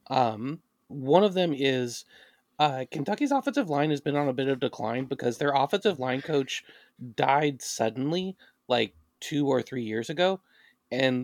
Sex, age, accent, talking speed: male, 30-49, American, 160 wpm